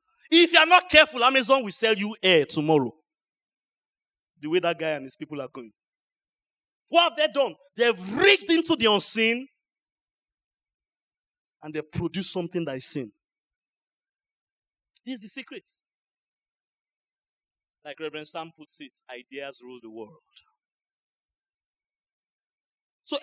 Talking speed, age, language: 135 wpm, 30-49, English